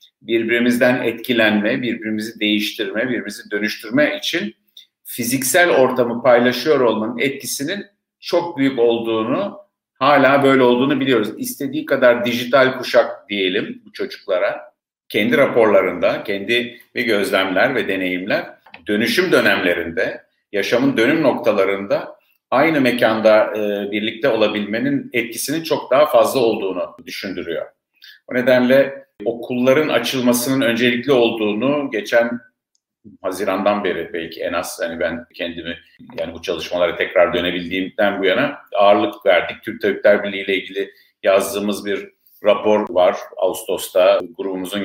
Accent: native